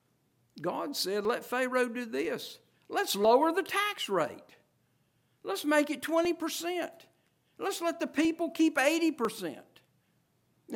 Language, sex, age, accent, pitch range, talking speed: English, male, 60-79, American, 205-320 Hz, 115 wpm